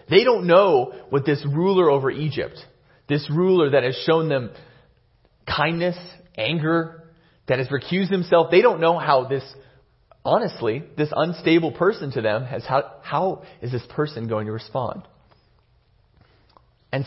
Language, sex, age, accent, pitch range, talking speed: English, male, 30-49, American, 125-165 Hz, 145 wpm